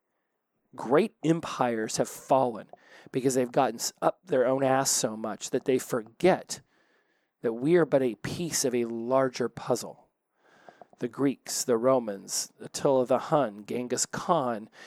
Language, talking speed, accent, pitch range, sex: English, 145 wpm, American, 125-150 Hz, male